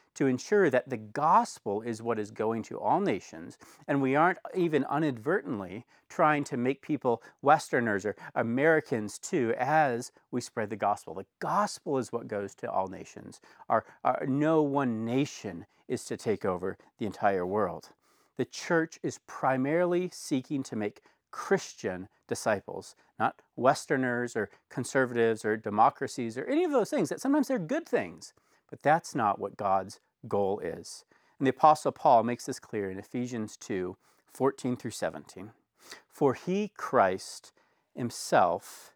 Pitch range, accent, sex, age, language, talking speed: 115-165 Hz, American, male, 40-59, English, 150 wpm